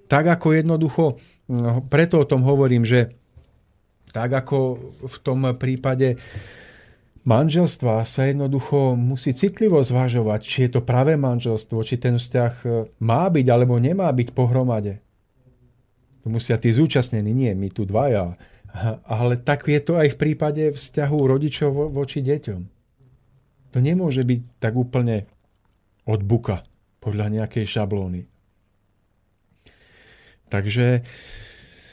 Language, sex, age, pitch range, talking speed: Slovak, male, 40-59, 110-135 Hz, 115 wpm